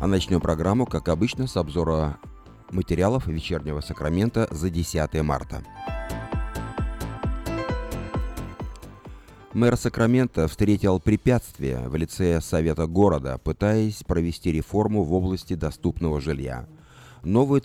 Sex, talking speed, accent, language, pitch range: male, 100 wpm, native, Russian, 85-110 Hz